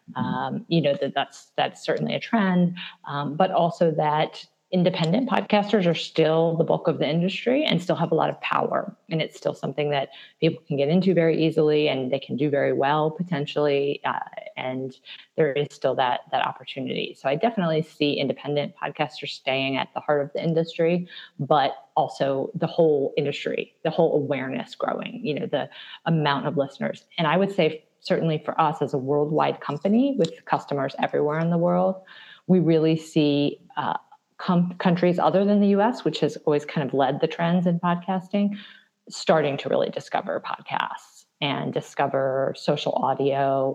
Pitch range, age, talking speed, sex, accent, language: 145-180 Hz, 30-49, 175 wpm, female, American, English